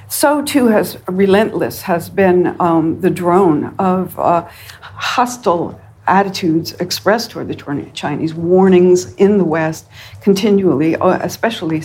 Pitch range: 160-195 Hz